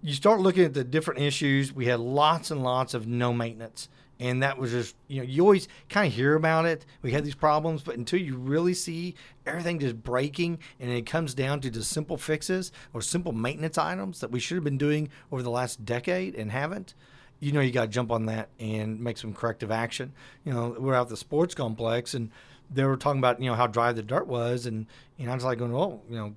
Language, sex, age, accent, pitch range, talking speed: English, male, 40-59, American, 120-150 Hz, 240 wpm